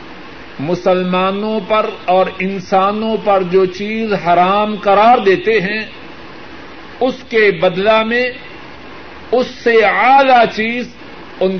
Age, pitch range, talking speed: 60-79, 180-225 Hz, 105 wpm